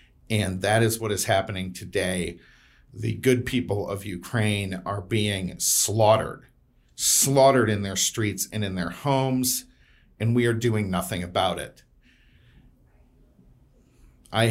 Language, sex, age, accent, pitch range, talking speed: English, male, 50-69, American, 90-110 Hz, 130 wpm